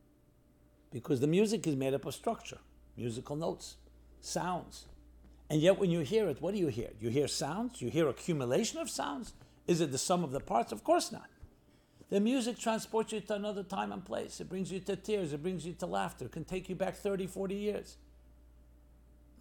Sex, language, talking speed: male, English, 205 wpm